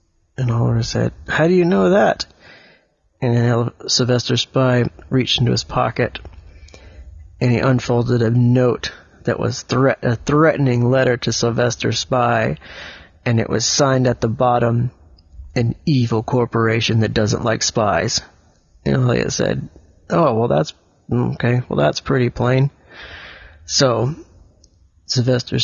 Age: 30-49